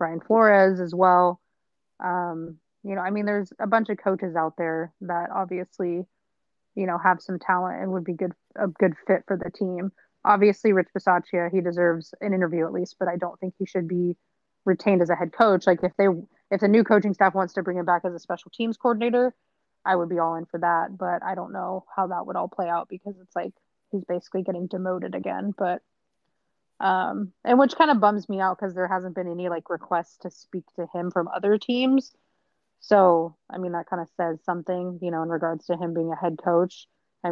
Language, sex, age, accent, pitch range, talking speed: English, female, 20-39, American, 175-195 Hz, 225 wpm